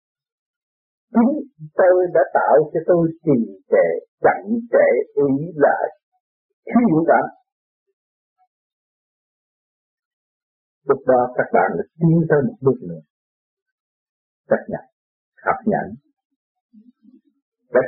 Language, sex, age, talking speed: Vietnamese, male, 50-69, 100 wpm